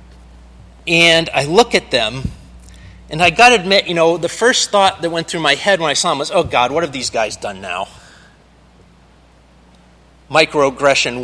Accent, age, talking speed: American, 30-49, 180 wpm